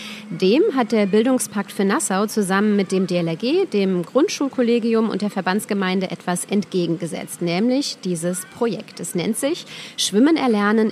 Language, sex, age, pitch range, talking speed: German, female, 30-49, 180-230 Hz, 135 wpm